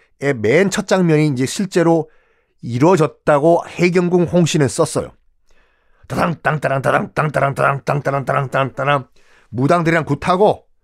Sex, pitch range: male, 120-185 Hz